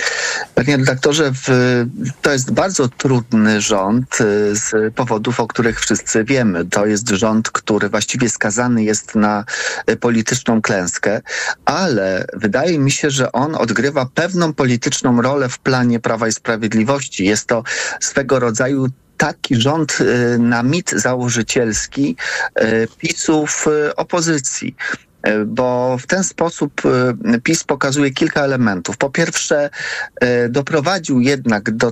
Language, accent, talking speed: Polish, native, 115 wpm